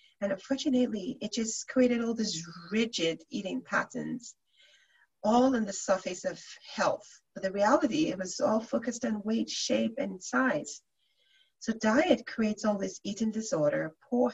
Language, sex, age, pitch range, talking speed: English, female, 40-59, 200-275 Hz, 150 wpm